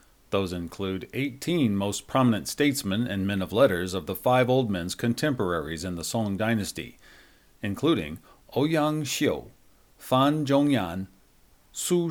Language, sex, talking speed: English, male, 135 wpm